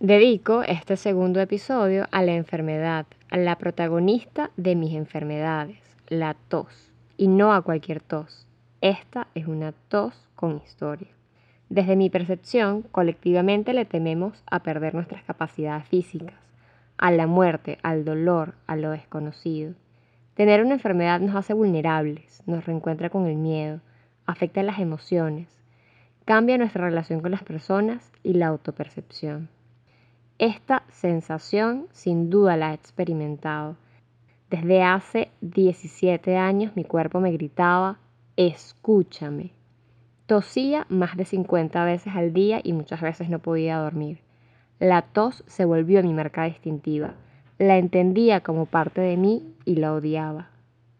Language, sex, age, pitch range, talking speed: Spanish, female, 10-29, 155-190 Hz, 135 wpm